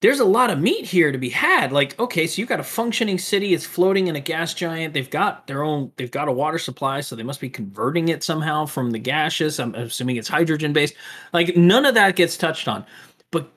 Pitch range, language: 125-165 Hz, English